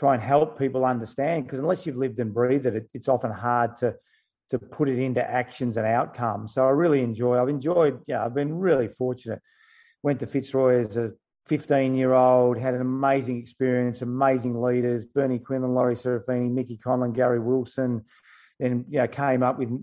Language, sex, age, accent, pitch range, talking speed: English, male, 30-49, Australian, 120-135 Hz, 200 wpm